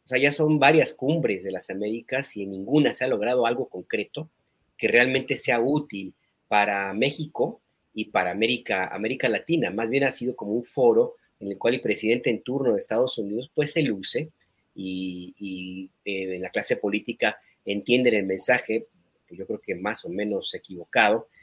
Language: Spanish